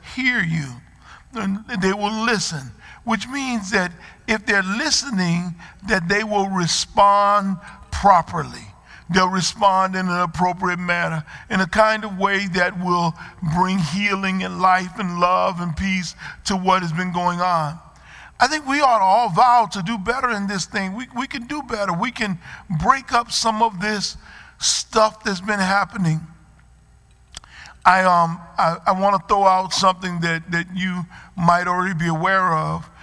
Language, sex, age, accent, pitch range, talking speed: English, male, 50-69, American, 175-205 Hz, 160 wpm